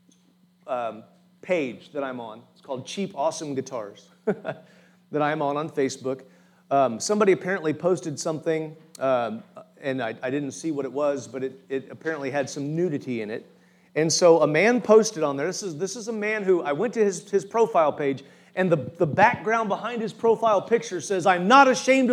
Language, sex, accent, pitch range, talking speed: English, male, American, 160-210 Hz, 195 wpm